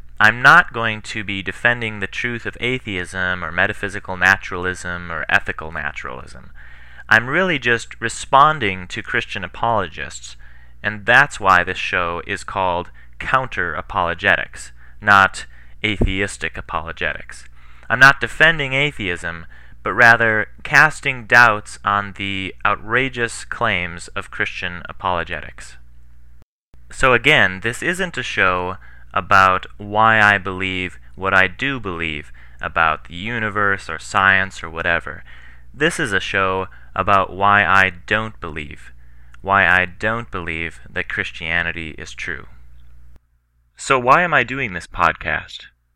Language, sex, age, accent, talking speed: English, male, 30-49, American, 125 wpm